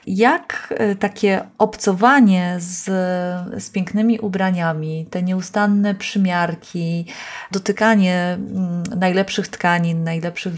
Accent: native